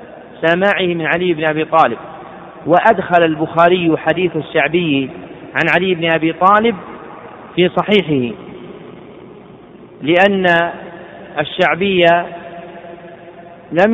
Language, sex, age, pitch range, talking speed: Arabic, male, 40-59, 160-185 Hz, 85 wpm